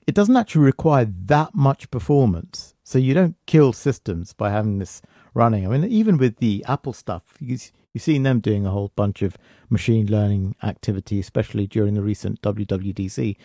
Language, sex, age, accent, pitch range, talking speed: English, male, 50-69, British, 100-135 Hz, 180 wpm